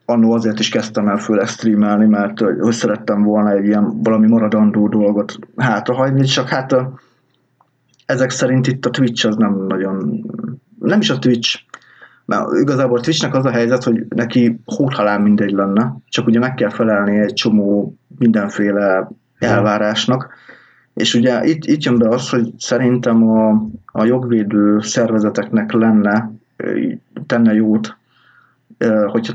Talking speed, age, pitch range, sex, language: 140 wpm, 20-39, 105-120 Hz, male, Hungarian